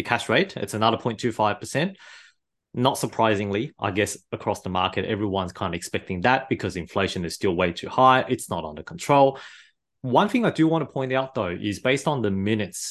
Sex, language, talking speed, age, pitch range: male, English, 195 wpm, 30-49, 100-130 Hz